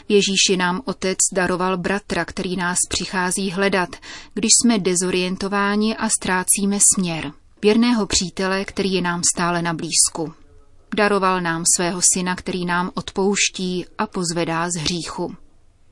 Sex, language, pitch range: female, Czech, 180-210 Hz